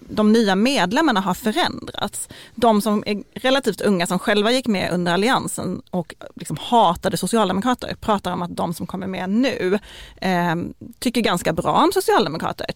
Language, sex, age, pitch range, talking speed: Swedish, female, 30-49, 180-215 Hz, 160 wpm